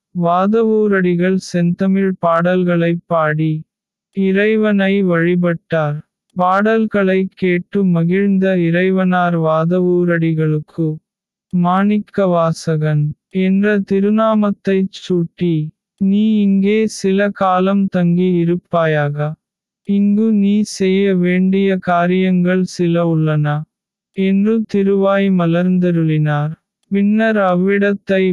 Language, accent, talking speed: Tamil, native, 70 wpm